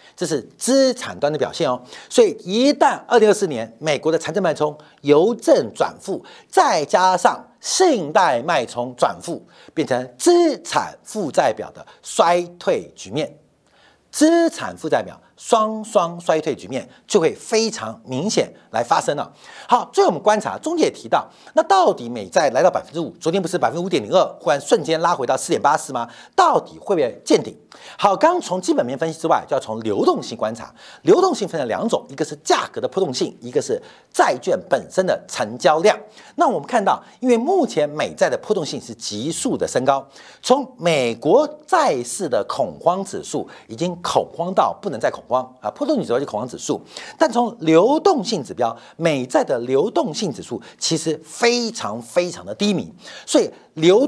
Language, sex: Chinese, male